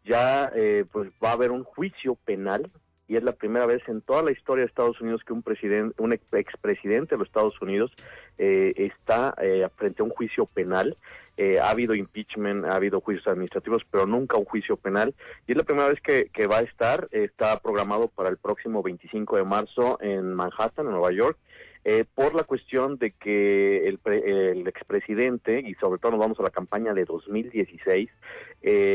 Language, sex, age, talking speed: English, male, 40-59, 200 wpm